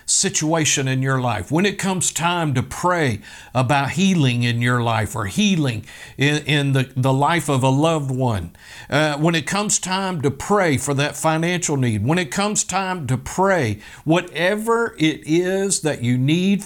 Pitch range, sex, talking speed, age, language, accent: 140-195 Hz, male, 175 wpm, 50-69, English, American